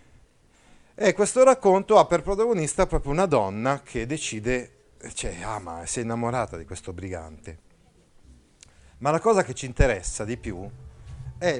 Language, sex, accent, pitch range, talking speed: Italian, male, native, 100-145 Hz, 155 wpm